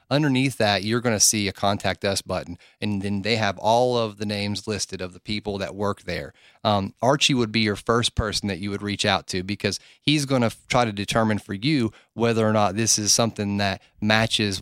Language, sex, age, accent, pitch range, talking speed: English, male, 30-49, American, 100-120 Hz, 225 wpm